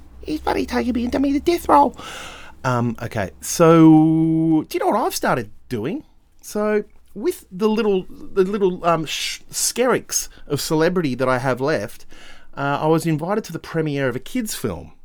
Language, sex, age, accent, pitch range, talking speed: English, male, 30-49, Australian, 115-160 Hz, 175 wpm